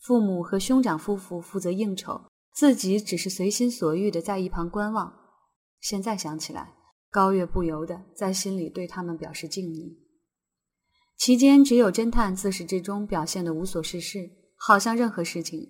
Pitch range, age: 175-220 Hz, 20-39